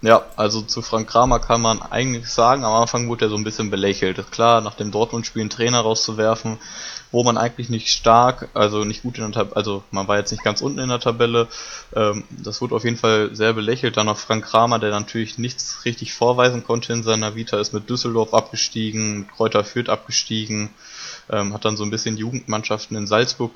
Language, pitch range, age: German, 110-120 Hz, 20-39